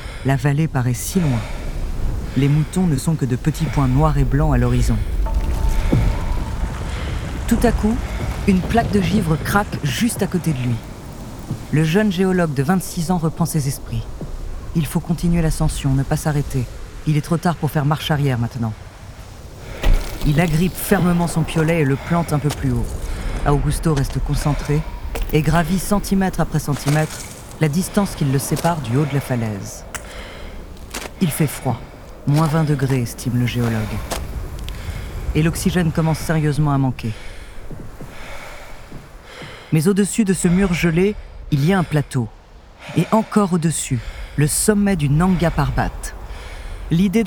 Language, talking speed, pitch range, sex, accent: French, 155 wpm, 115-170 Hz, female, French